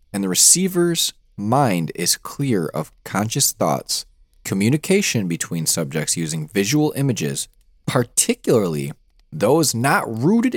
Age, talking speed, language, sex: 20-39, 110 wpm, English, male